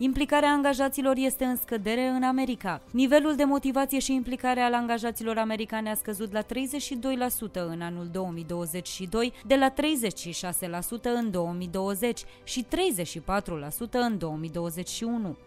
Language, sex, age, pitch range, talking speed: Romanian, female, 20-39, 195-265 Hz, 120 wpm